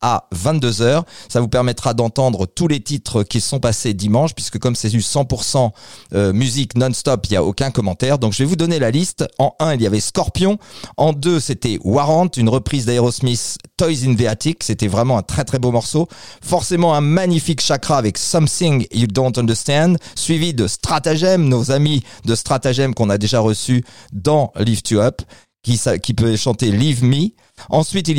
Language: French